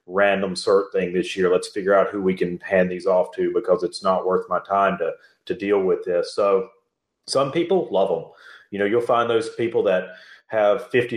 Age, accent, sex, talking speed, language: 30-49, American, male, 215 wpm, English